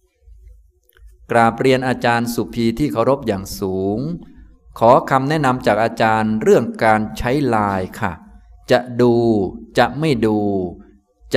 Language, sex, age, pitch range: Thai, male, 20-39, 100-130 Hz